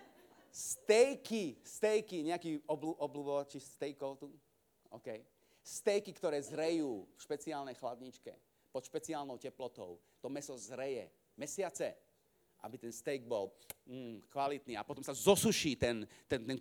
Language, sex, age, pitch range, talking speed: Slovak, male, 40-59, 140-205 Hz, 120 wpm